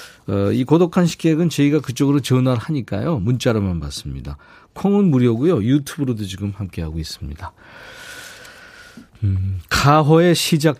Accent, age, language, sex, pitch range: native, 40-59, Korean, male, 95-135 Hz